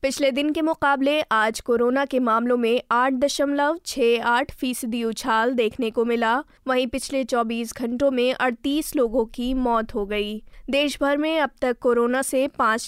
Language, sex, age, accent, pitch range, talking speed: Hindi, female, 20-39, native, 230-275 Hz, 170 wpm